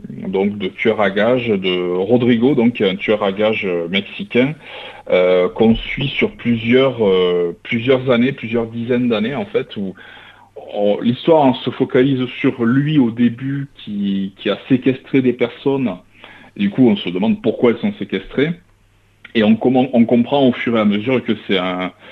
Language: French